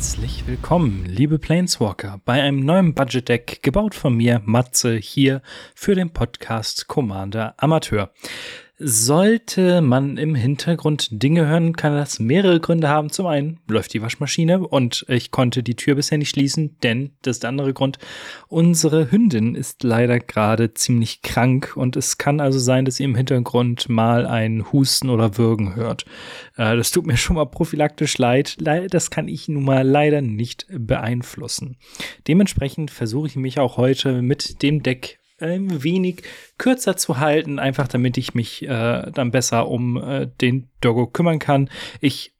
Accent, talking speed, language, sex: German, 160 wpm, German, male